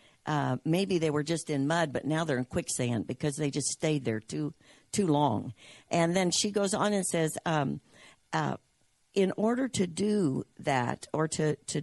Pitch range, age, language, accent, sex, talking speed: 145-180 Hz, 60-79, English, American, female, 190 wpm